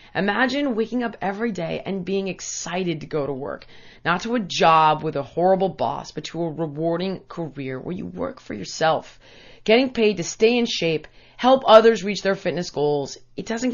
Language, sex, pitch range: English, female, 160-230 Hz